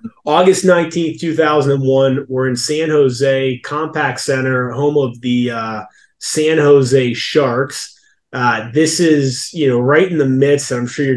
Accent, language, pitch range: American, English, 120-145 Hz